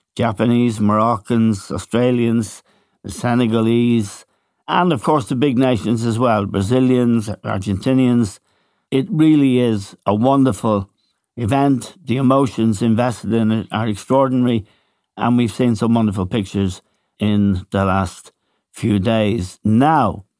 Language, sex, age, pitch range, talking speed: English, male, 60-79, 105-130 Hz, 120 wpm